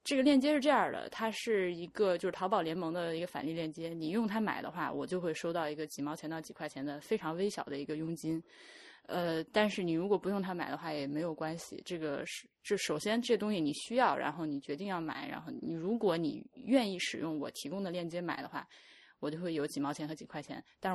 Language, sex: Chinese, female